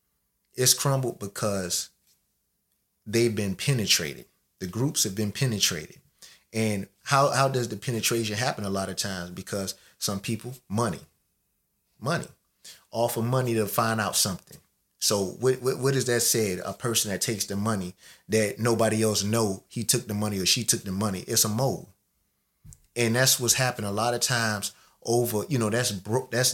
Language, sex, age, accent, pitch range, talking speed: English, male, 30-49, American, 100-125 Hz, 170 wpm